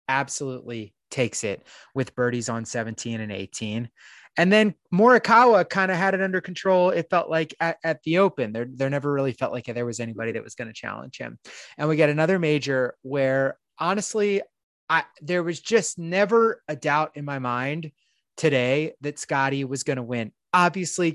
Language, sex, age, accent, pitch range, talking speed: English, male, 30-49, American, 120-165 Hz, 185 wpm